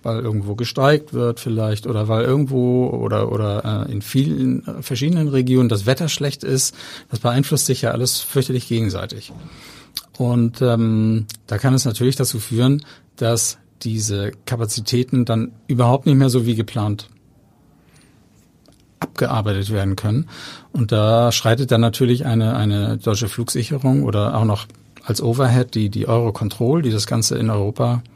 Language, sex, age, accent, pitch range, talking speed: German, male, 50-69, German, 110-130 Hz, 145 wpm